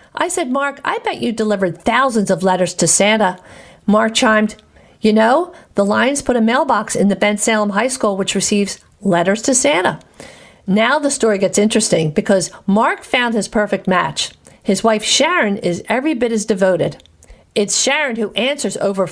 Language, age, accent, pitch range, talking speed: English, 50-69, American, 185-230 Hz, 175 wpm